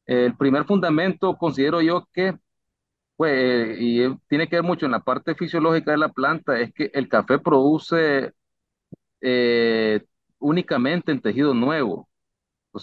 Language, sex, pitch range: Spanish, male, 120-160 Hz